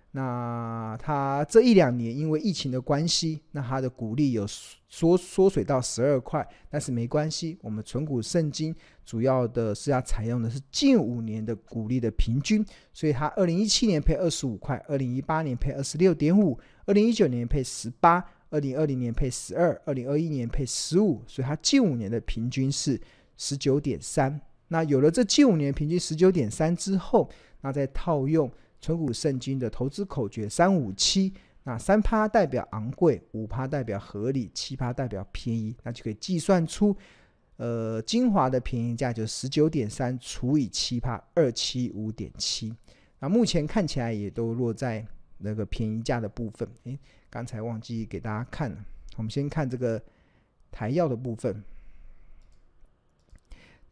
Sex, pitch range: male, 115-155 Hz